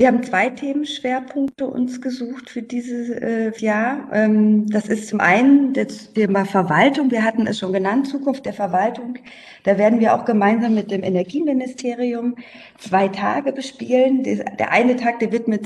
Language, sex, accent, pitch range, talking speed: German, female, German, 190-250 Hz, 155 wpm